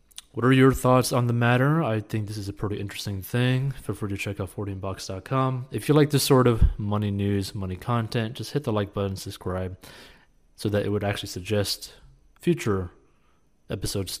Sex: male